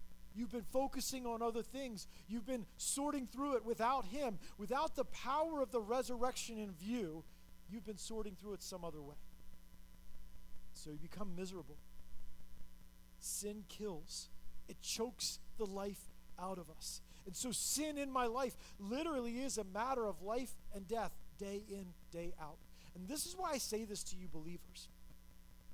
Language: English